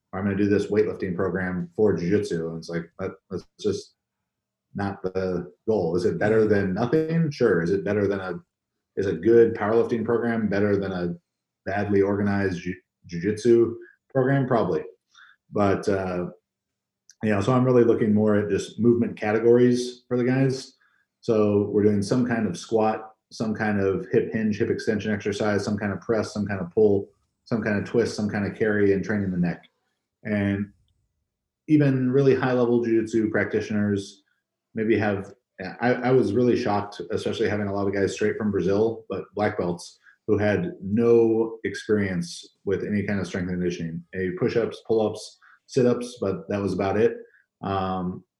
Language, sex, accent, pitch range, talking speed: English, male, American, 95-115 Hz, 175 wpm